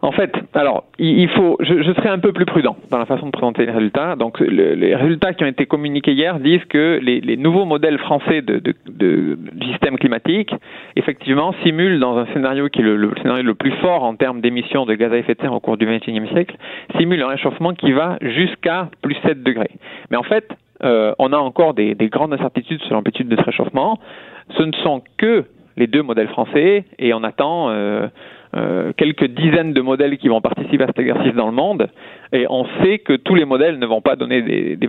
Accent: French